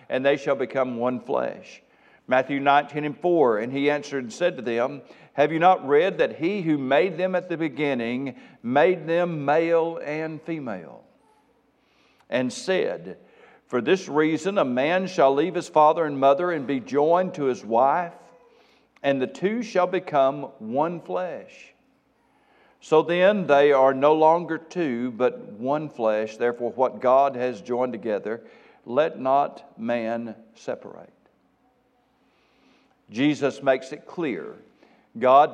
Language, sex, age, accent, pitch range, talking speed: English, male, 60-79, American, 130-175 Hz, 145 wpm